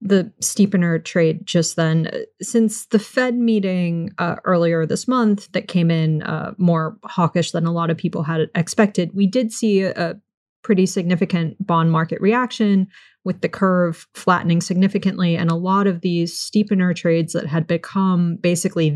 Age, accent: 30-49, American